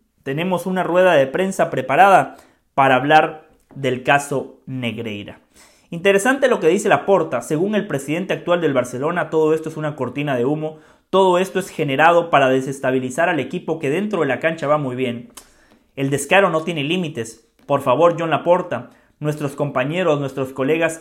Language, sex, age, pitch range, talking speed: English, male, 30-49, 135-175 Hz, 165 wpm